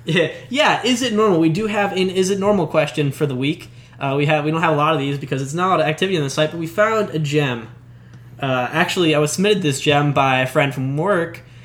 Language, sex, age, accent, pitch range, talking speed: English, male, 10-29, American, 125-170 Hz, 275 wpm